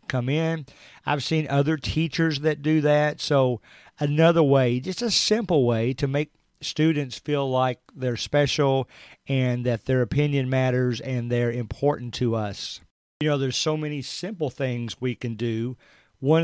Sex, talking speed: male, 160 wpm